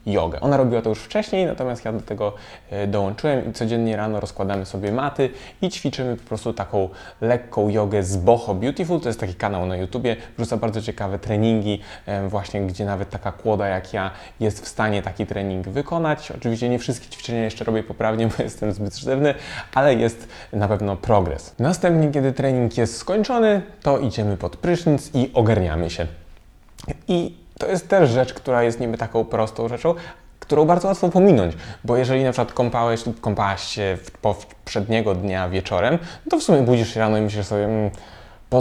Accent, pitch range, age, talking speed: native, 100-140 Hz, 20-39, 175 wpm